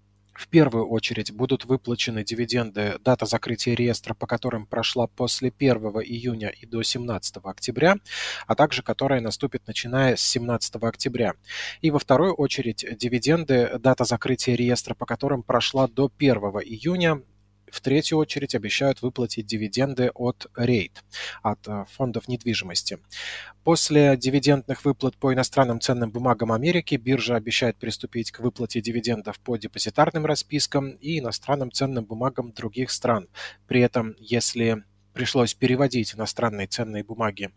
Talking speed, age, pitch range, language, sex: 135 wpm, 20-39, 115-135 Hz, Russian, male